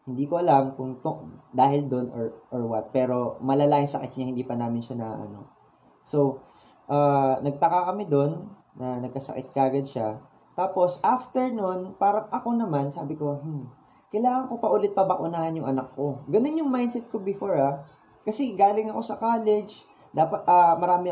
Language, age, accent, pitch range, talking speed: Filipino, 20-39, native, 130-195 Hz, 175 wpm